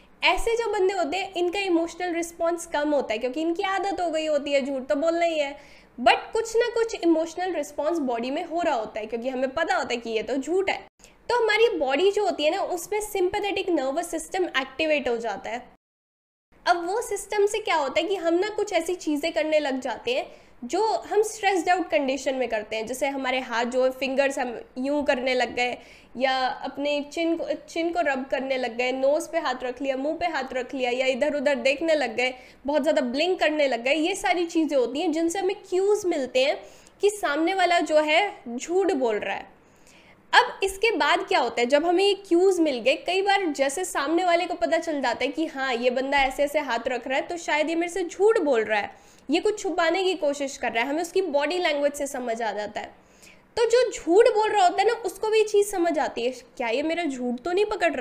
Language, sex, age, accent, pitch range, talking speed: Hindi, female, 10-29, native, 270-365 Hz, 235 wpm